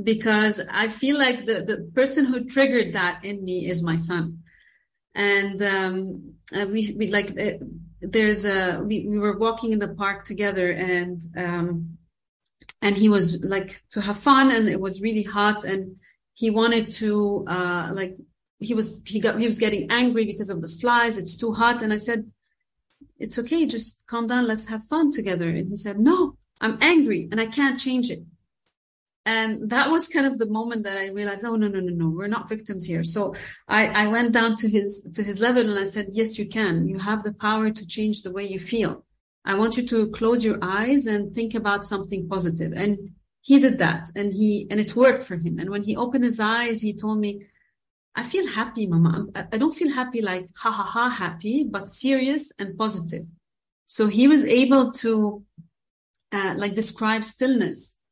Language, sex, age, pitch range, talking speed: English, female, 40-59, 195-230 Hz, 195 wpm